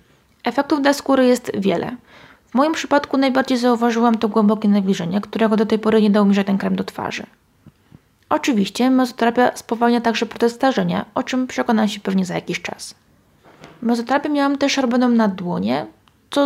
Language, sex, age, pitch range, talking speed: Polish, female, 20-39, 210-255 Hz, 165 wpm